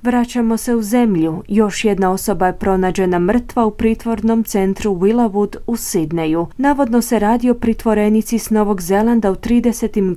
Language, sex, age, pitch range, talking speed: Croatian, female, 30-49, 185-225 Hz, 155 wpm